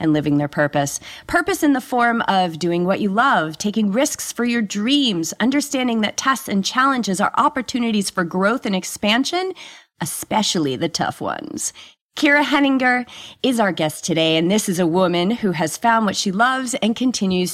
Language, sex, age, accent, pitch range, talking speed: English, female, 30-49, American, 165-220 Hz, 180 wpm